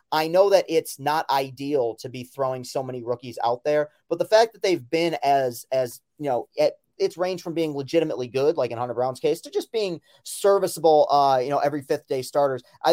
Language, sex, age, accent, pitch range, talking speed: English, male, 30-49, American, 130-155 Hz, 220 wpm